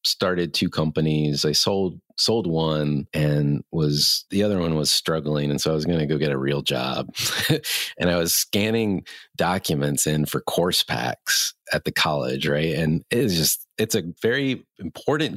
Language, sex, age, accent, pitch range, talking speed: English, male, 30-49, American, 75-90 Hz, 175 wpm